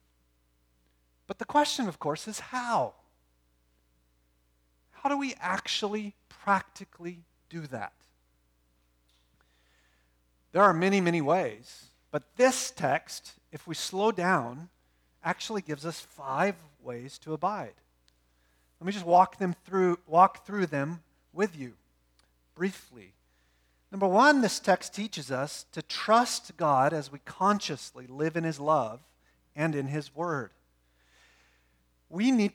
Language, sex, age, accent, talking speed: English, male, 40-59, American, 125 wpm